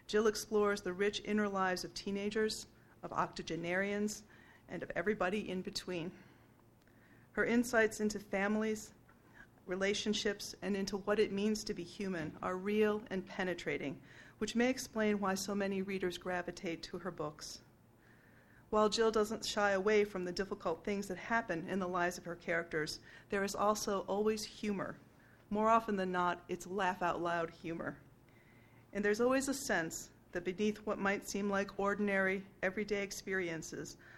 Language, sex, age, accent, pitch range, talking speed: English, female, 40-59, American, 175-210 Hz, 150 wpm